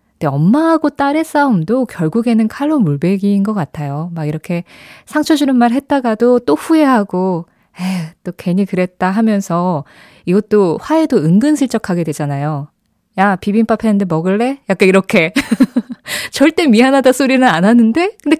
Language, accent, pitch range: Korean, native, 180-265 Hz